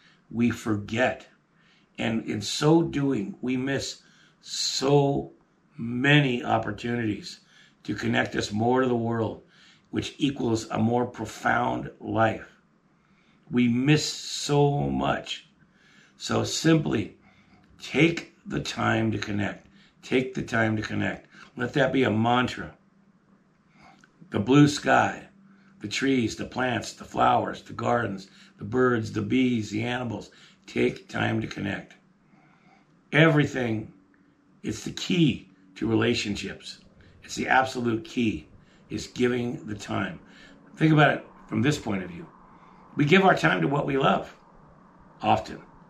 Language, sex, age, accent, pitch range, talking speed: English, male, 60-79, American, 110-150 Hz, 125 wpm